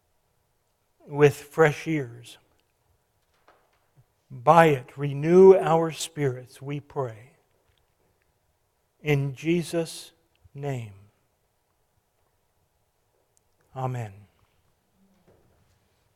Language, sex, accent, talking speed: English, male, American, 50 wpm